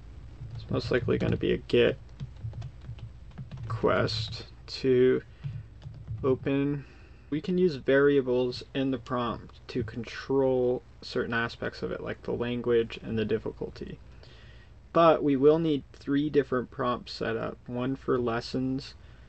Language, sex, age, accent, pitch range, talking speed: English, male, 20-39, American, 115-135 Hz, 130 wpm